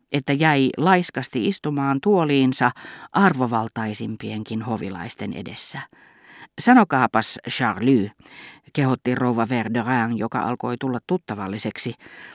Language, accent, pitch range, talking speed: Finnish, native, 115-150 Hz, 85 wpm